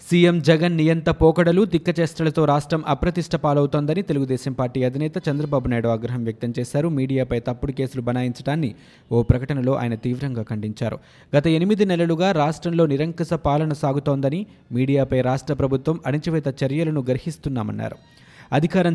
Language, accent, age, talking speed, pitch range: Telugu, native, 20-39, 125 wpm, 130-160 Hz